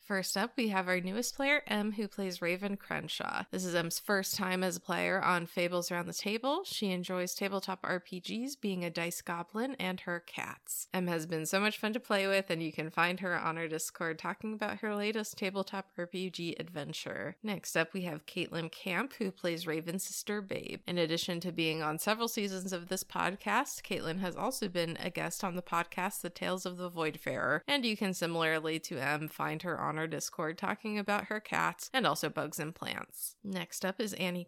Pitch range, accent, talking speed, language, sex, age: 170-210 Hz, American, 205 wpm, English, female, 20-39